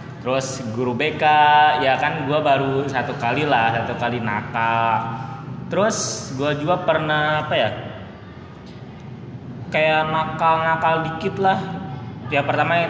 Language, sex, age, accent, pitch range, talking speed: Indonesian, male, 20-39, native, 130-160 Hz, 120 wpm